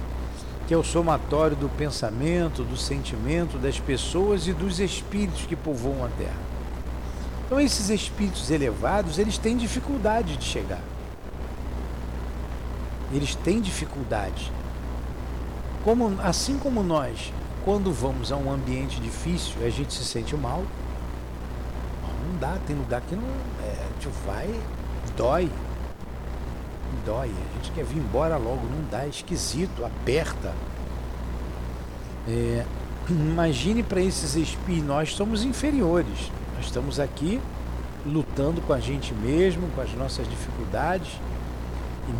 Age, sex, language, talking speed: 60-79, male, Portuguese, 115 wpm